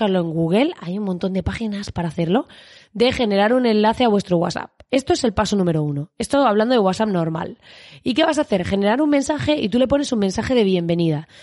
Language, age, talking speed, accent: Spanish, 20-39, 225 wpm, Spanish